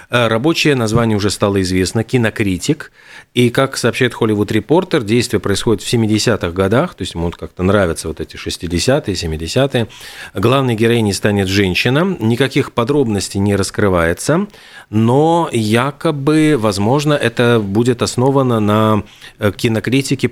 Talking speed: 125 wpm